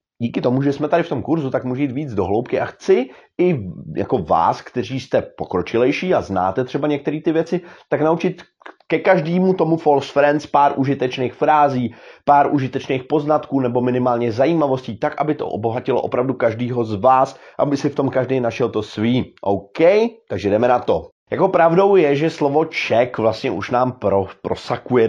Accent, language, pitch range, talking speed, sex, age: native, Czech, 110-160 Hz, 180 wpm, male, 30-49